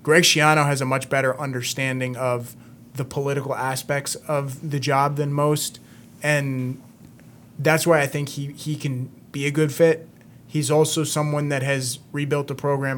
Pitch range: 130-145 Hz